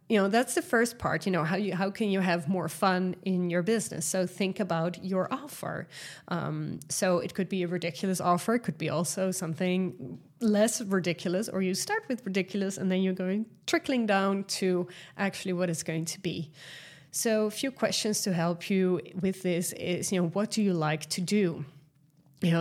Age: 20-39